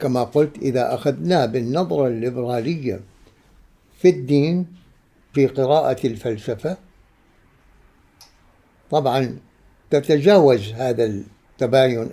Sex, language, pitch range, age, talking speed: male, Arabic, 115-150 Hz, 60-79, 75 wpm